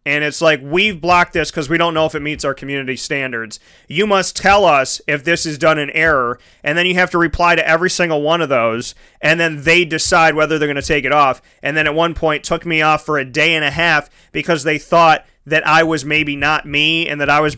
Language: English